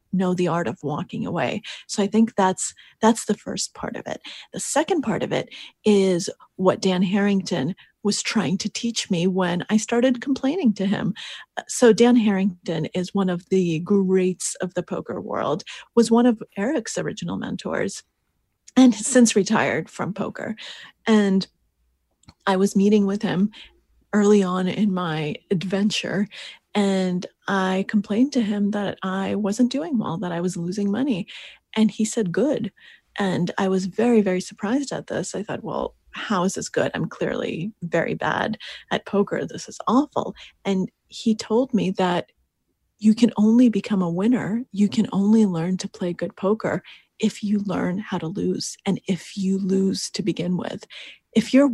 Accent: American